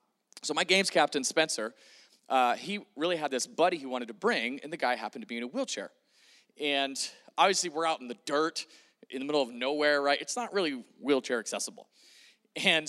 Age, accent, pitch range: 30-49, American, 135-190 Hz